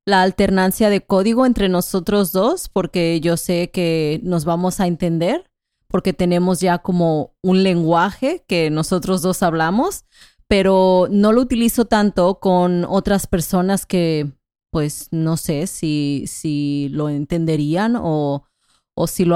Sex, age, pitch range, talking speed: female, 30-49, 165-195 Hz, 140 wpm